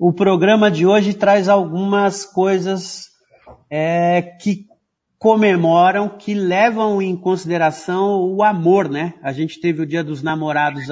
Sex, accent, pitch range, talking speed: male, Brazilian, 160-200 Hz, 125 wpm